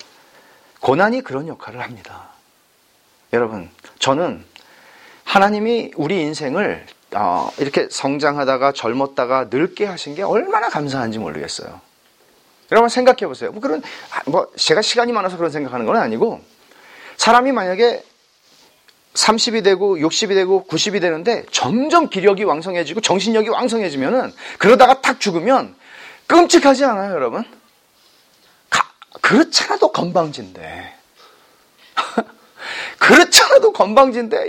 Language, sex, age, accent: Korean, male, 40-59, native